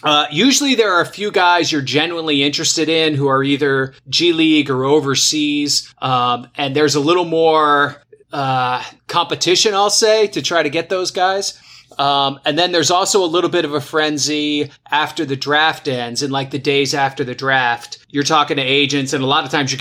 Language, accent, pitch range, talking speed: English, American, 135-165 Hz, 200 wpm